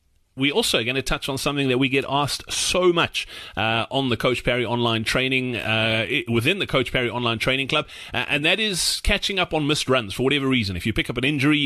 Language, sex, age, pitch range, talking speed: English, male, 30-49, 125-165 Hz, 230 wpm